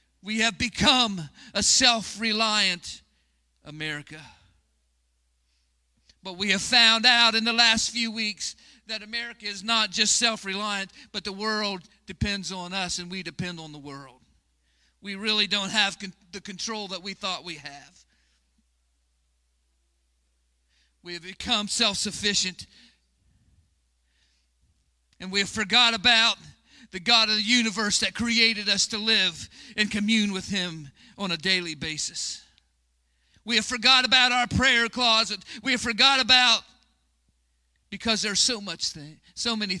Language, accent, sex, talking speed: English, American, male, 135 wpm